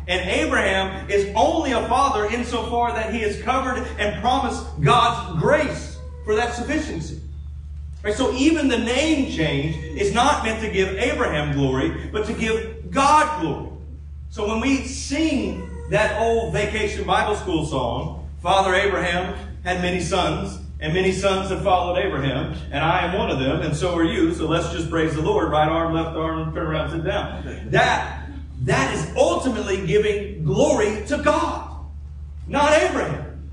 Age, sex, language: 40-59, male, English